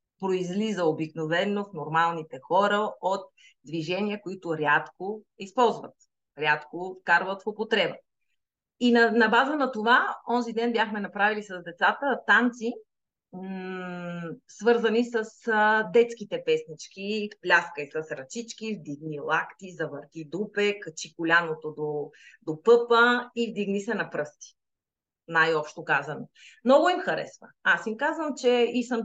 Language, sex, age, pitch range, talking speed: Bulgarian, female, 30-49, 170-235 Hz, 125 wpm